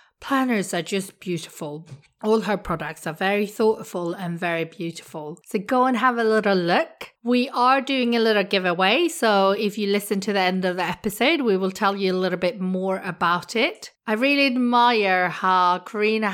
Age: 40-59